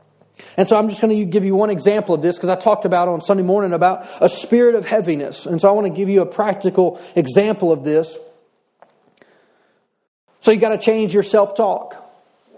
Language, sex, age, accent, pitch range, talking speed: English, male, 40-59, American, 170-210 Hz, 205 wpm